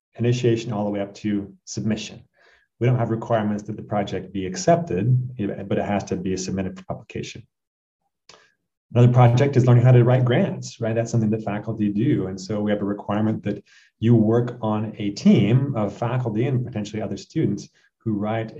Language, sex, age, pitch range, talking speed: English, male, 30-49, 100-115 Hz, 190 wpm